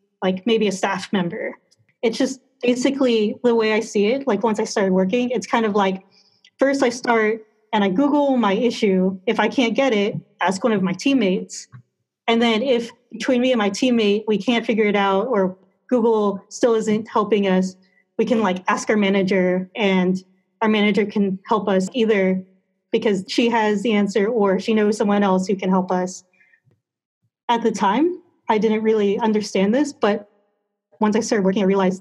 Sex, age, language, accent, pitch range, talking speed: female, 30-49, English, American, 195-235 Hz, 190 wpm